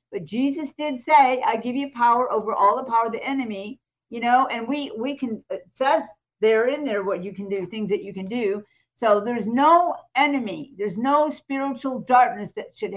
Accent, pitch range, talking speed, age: American, 220-295 Hz, 205 wpm, 50-69